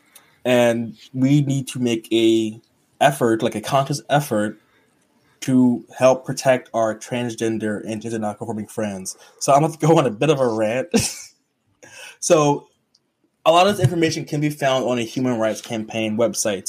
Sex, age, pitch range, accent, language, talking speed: male, 20-39, 115-130 Hz, American, English, 170 wpm